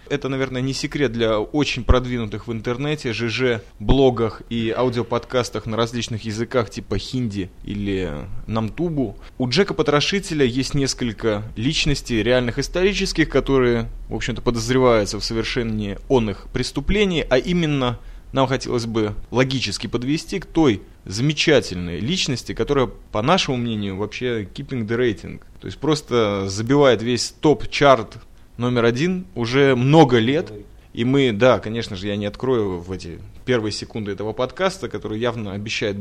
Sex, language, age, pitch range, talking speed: male, Russian, 20-39, 105-135 Hz, 135 wpm